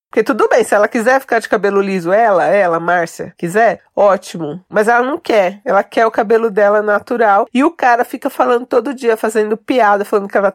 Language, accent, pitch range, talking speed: Portuguese, Brazilian, 200-255 Hz, 210 wpm